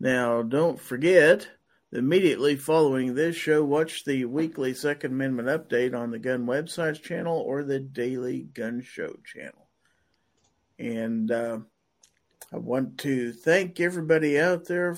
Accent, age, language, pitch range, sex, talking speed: American, 50-69, English, 125-150 Hz, male, 130 wpm